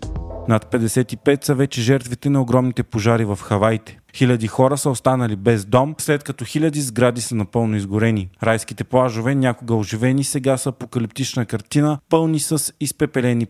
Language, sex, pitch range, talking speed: Bulgarian, male, 115-140 Hz, 150 wpm